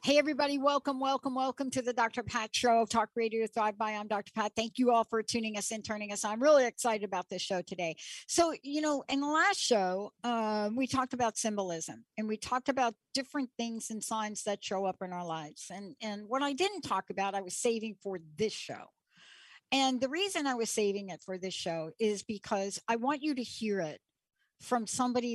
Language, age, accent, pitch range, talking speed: English, 60-79, American, 190-255 Hz, 225 wpm